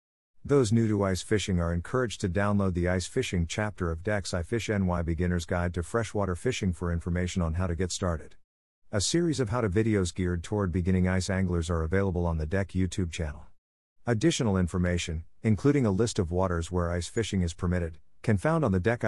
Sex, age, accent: male, 50-69, American